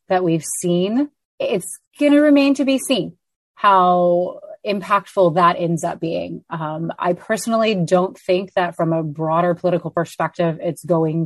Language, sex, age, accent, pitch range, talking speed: English, female, 30-49, American, 165-185 Hz, 155 wpm